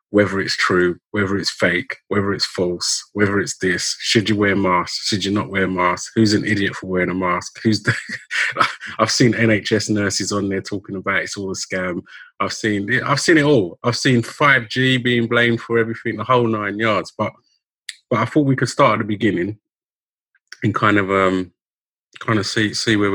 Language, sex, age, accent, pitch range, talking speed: English, male, 30-49, British, 95-115 Hz, 205 wpm